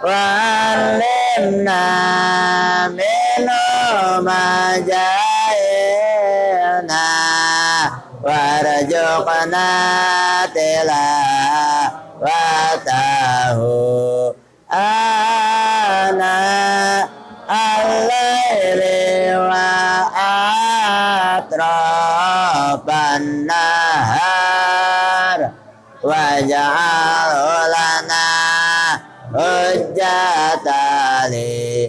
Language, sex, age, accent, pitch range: Indonesian, male, 40-59, American, 140-195 Hz